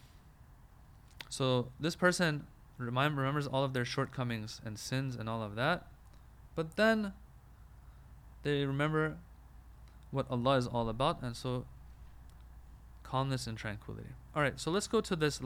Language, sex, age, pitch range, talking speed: English, male, 20-39, 110-140 Hz, 130 wpm